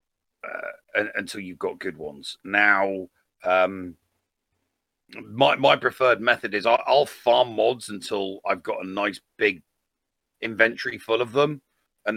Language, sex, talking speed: English, male, 145 wpm